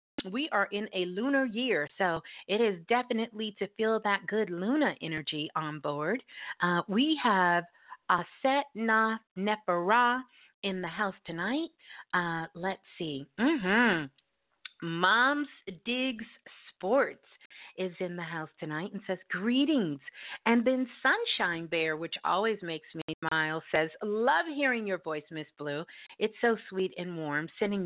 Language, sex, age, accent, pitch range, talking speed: English, female, 40-59, American, 165-250 Hz, 140 wpm